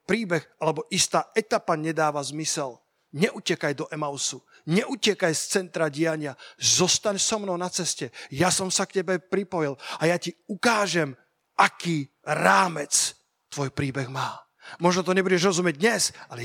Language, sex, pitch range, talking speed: Slovak, male, 155-205 Hz, 140 wpm